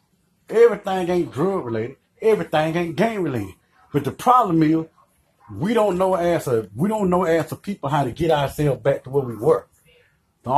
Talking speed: 185 wpm